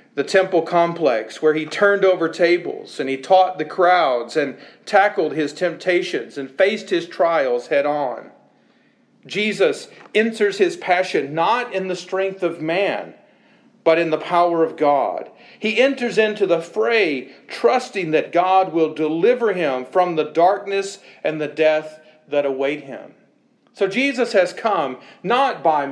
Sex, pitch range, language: male, 155-225 Hz, English